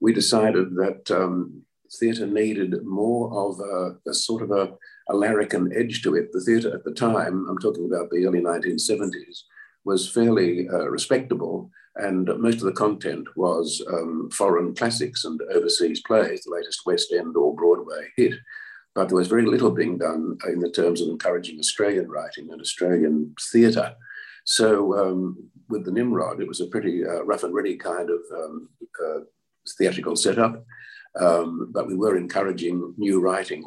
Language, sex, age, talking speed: English, male, 50-69, 170 wpm